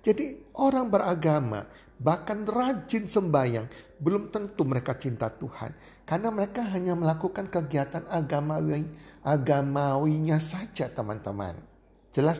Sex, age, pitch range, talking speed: male, 50-69, 130-190 Hz, 100 wpm